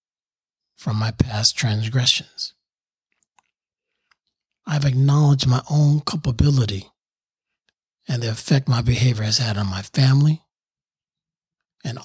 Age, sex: 40-59, male